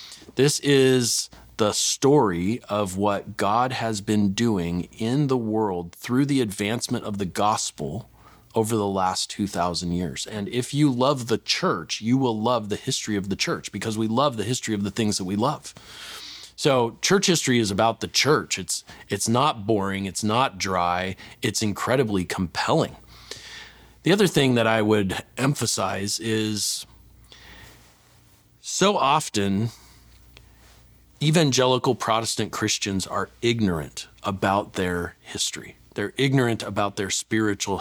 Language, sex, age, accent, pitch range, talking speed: English, male, 40-59, American, 100-120 Hz, 140 wpm